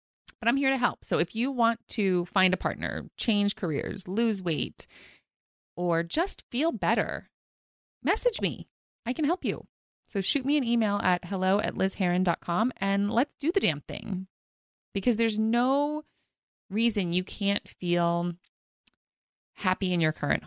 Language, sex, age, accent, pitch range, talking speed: English, female, 30-49, American, 175-235 Hz, 155 wpm